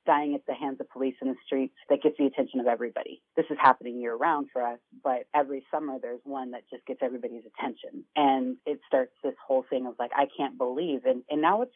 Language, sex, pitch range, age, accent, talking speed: English, female, 130-160 Hz, 30-49, American, 235 wpm